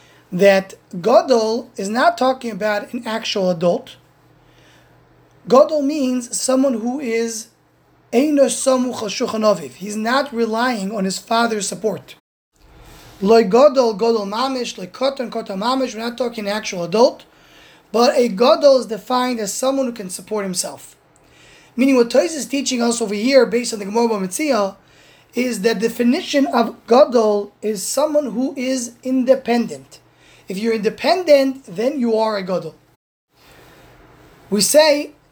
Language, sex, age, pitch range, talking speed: English, male, 20-39, 215-260 Hz, 120 wpm